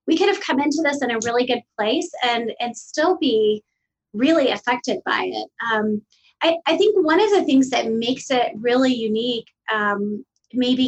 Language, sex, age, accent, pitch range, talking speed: English, female, 30-49, American, 220-270 Hz, 190 wpm